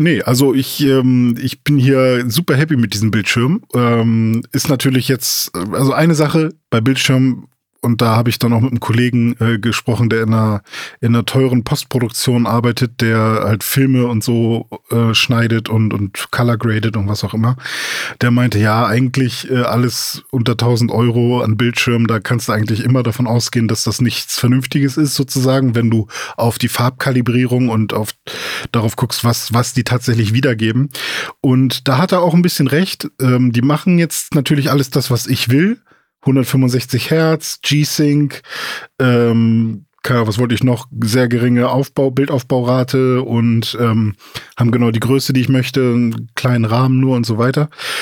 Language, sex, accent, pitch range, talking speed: German, male, German, 115-135 Hz, 175 wpm